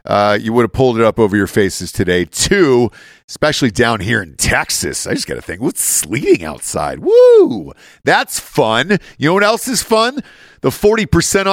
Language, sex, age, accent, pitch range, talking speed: English, male, 40-59, American, 115-165 Hz, 185 wpm